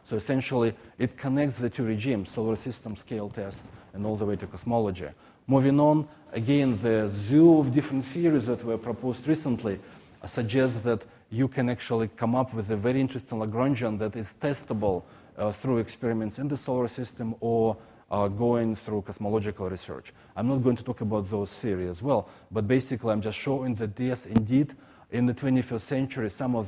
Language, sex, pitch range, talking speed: English, male, 105-125 Hz, 180 wpm